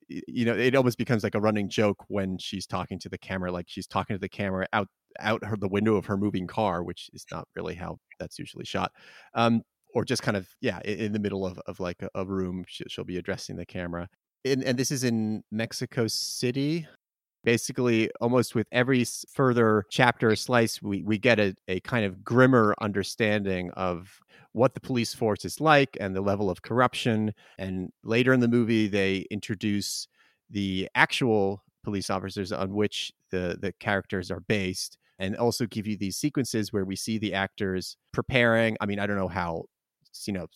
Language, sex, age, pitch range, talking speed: English, male, 30-49, 95-115 Hz, 200 wpm